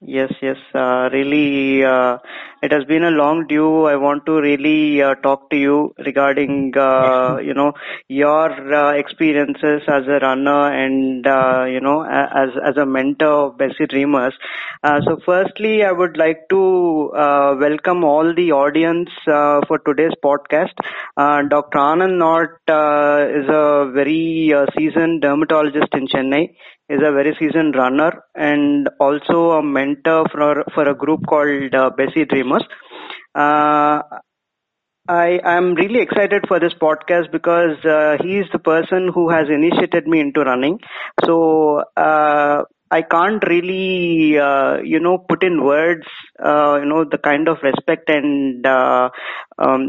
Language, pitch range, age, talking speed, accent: English, 140-160 Hz, 20-39, 155 wpm, Indian